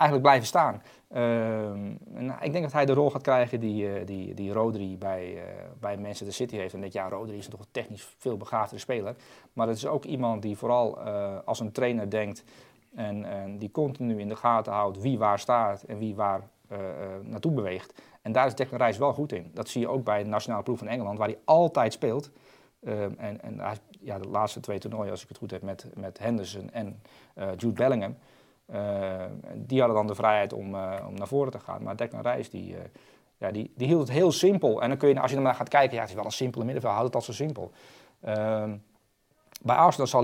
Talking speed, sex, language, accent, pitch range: 235 wpm, male, Dutch, Dutch, 100-130 Hz